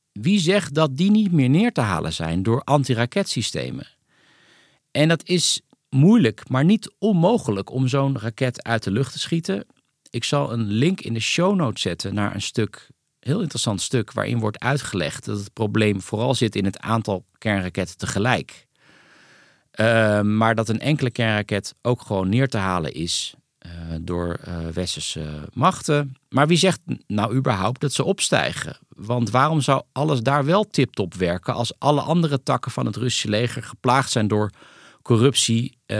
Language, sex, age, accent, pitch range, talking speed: Dutch, male, 50-69, Dutch, 105-145 Hz, 165 wpm